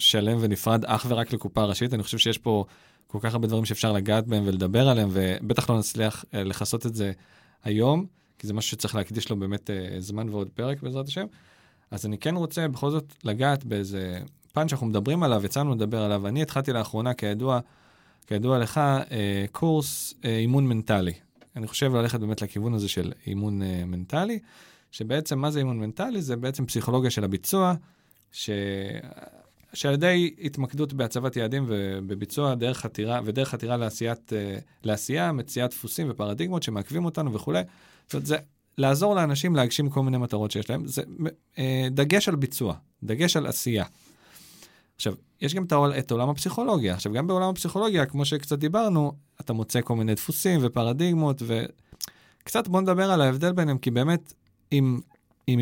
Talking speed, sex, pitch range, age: 155 wpm, male, 105-150 Hz, 20-39